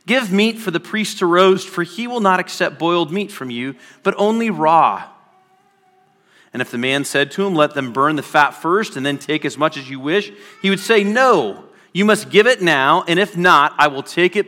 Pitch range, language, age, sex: 145-200 Hz, English, 40-59, male